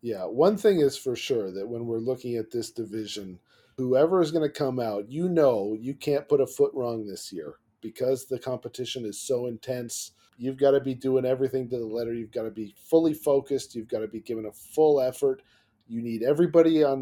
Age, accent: 40-59, American